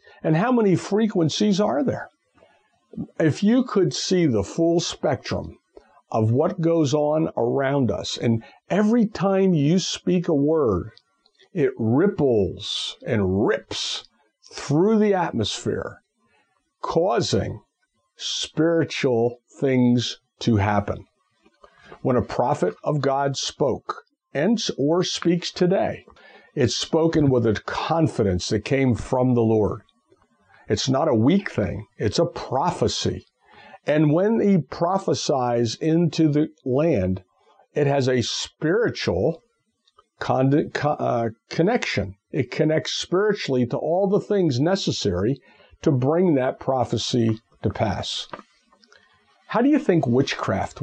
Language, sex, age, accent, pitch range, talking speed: English, male, 60-79, American, 120-180 Hz, 115 wpm